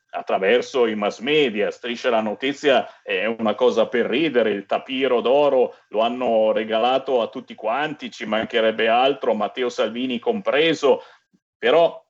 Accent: native